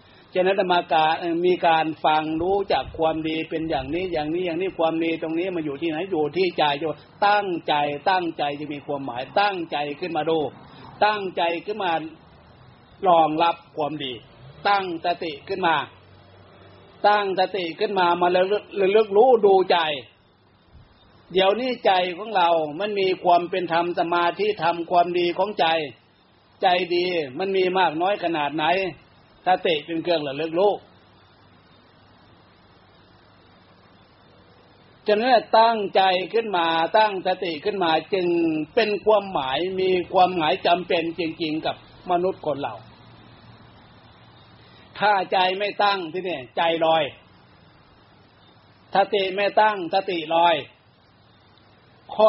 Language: Thai